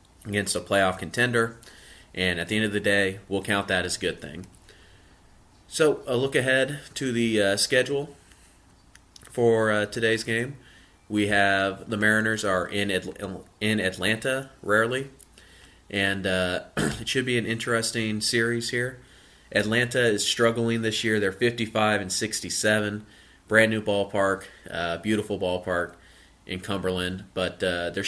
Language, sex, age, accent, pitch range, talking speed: English, male, 30-49, American, 95-110 Hz, 145 wpm